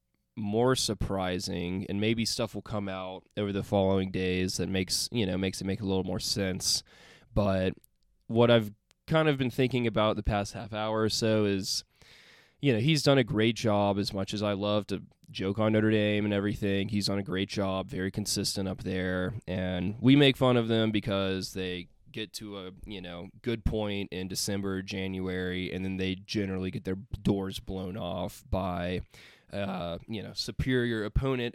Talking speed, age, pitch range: 190 wpm, 20-39, 95-110 Hz